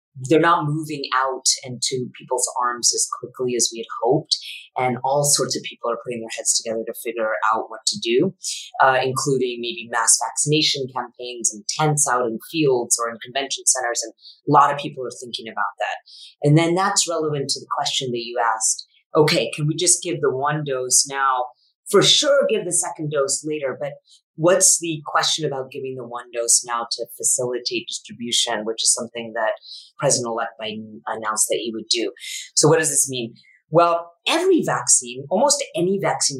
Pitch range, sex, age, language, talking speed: 125-170 Hz, female, 30-49, English, 190 wpm